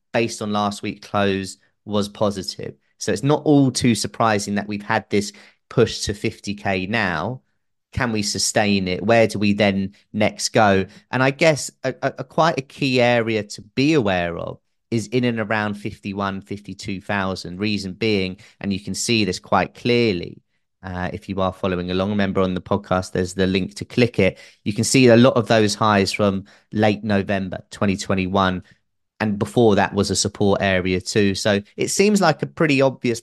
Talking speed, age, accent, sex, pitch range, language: 185 wpm, 30-49, British, male, 95-115 Hz, English